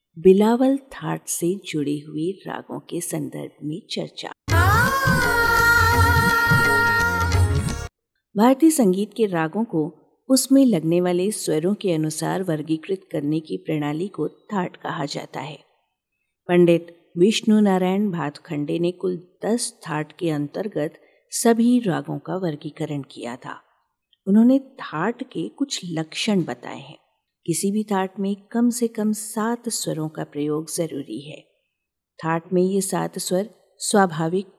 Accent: native